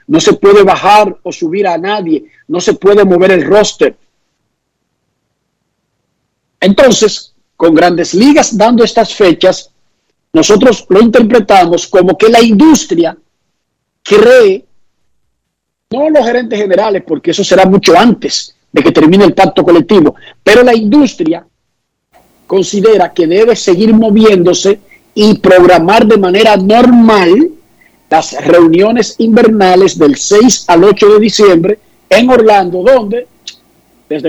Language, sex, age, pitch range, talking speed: Spanish, male, 50-69, 190-250 Hz, 125 wpm